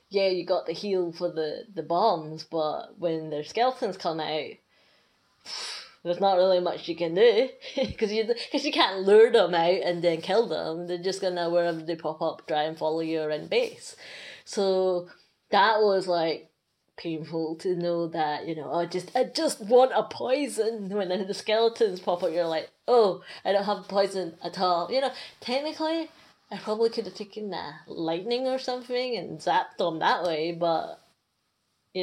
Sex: female